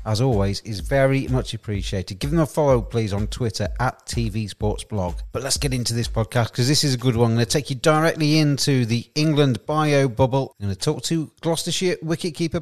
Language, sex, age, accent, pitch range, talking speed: English, male, 40-59, British, 115-145 Hz, 225 wpm